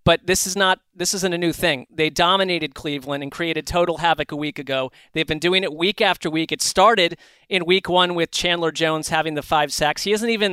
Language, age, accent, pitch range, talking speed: English, 30-49, American, 155-190 Hz, 235 wpm